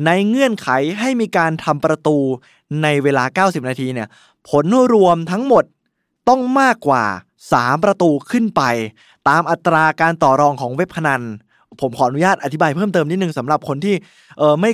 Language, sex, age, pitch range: Thai, male, 20-39, 140-185 Hz